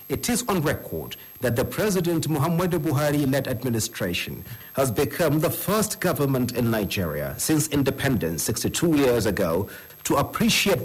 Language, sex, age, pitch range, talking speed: English, male, 50-69, 115-160 Hz, 135 wpm